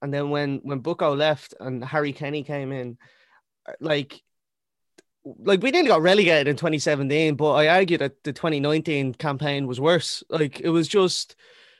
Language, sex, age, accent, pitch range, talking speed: English, male, 20-39, Irish, 135-165 Hz, 165 wpm